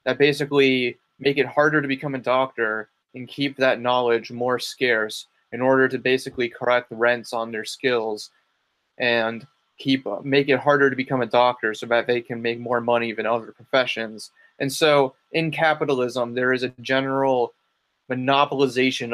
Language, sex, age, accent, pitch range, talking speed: English, male, 20-39, American, 120-130 Hz, 165 wpm